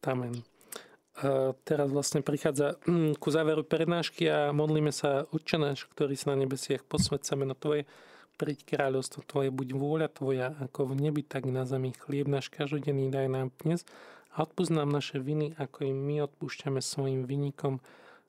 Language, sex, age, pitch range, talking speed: Slovak, male, 40-59, 140-160 Hz, 155 wpm